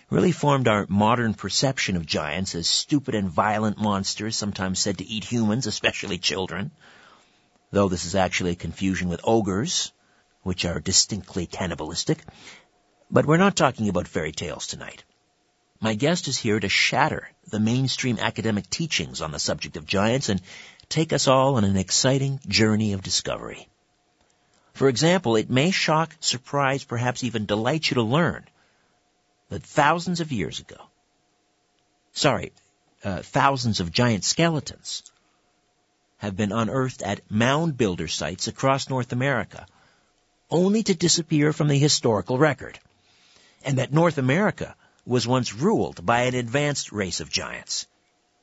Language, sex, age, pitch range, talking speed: English, male, 50-69, 100-140 Hz, 145 wpm